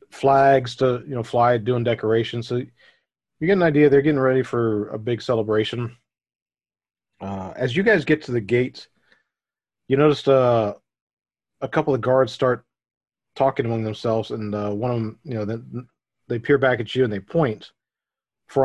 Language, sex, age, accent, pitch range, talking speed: English, male, 40-59, American, 110-135 Hz, 175 wpm